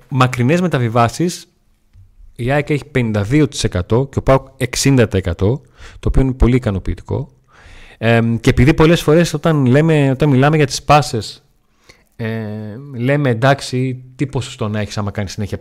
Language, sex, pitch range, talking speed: Greek, male, 105-140 Hz, 140 wpm